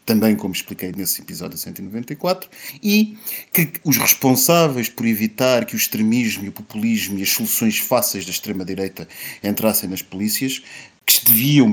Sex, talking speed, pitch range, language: male, 150 wpm, 110-140 Hz, Portuguese